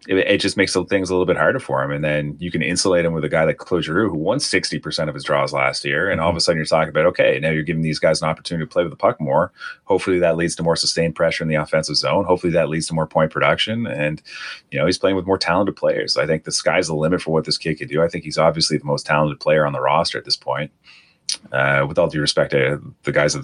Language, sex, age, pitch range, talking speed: English, male, 30-49, 75-90 Hz, 290 wpm